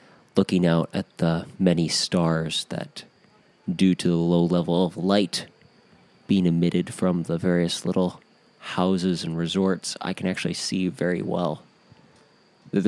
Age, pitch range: 30-49, 85-95 Hz